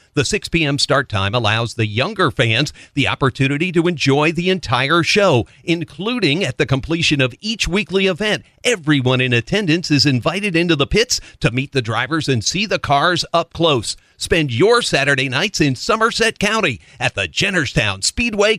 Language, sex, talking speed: English, male, 170 wpm